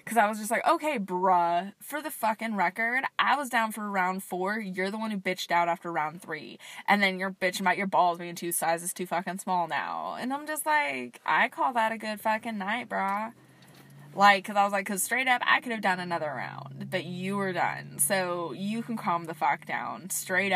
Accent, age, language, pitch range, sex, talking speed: American, 20-39, English, 175-220 Hz, female, 230 wpm